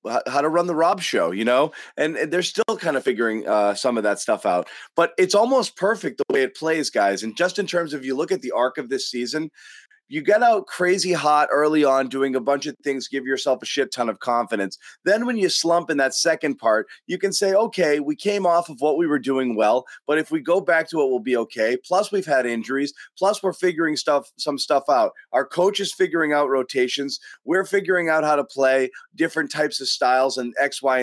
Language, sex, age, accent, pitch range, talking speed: English, male, 30-49, American, 135-185 Hz, 240 wpm